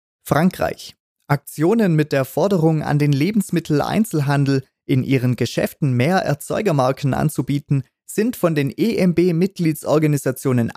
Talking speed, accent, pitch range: 100 wpm, German, 130-170 Hz